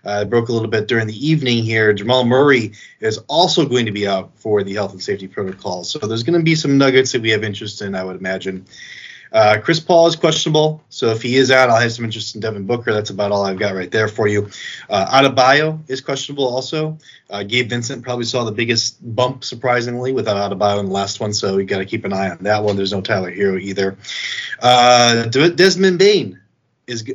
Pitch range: 100-130 Hz